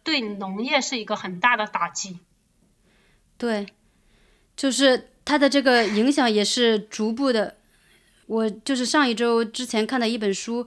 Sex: female